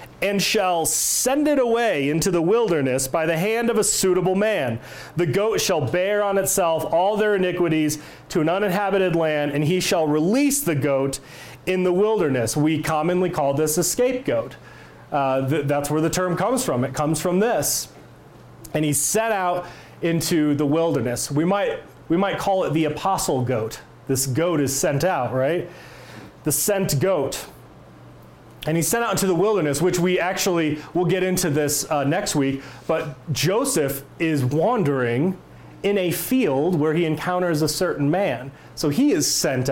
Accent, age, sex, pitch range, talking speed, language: American, 30-49, male, 140-185 Hz, 170 wpm, English